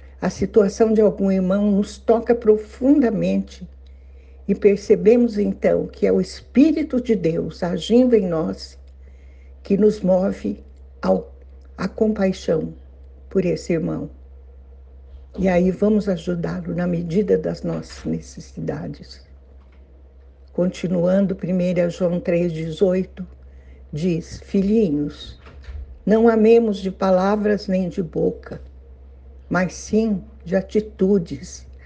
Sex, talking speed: female, 105 wpm